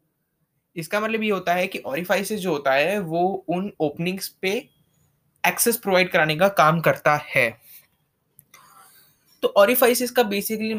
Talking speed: 135 wpm